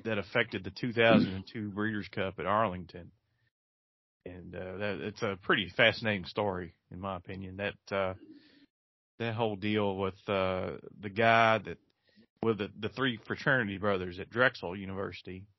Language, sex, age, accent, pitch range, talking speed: English, male, 30-49, American, 95-115 Hz, 145 wpm